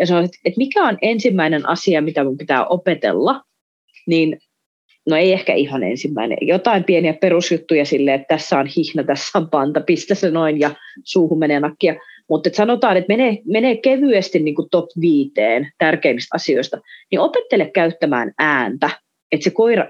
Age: 30-49